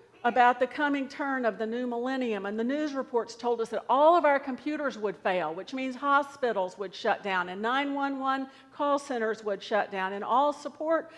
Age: 50-69